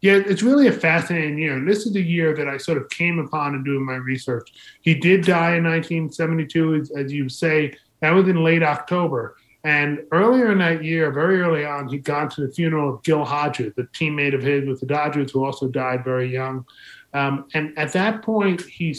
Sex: male